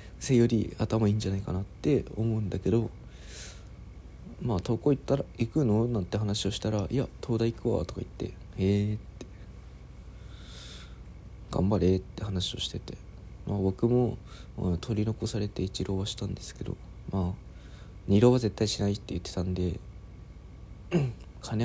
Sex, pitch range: male, 90-110 Hz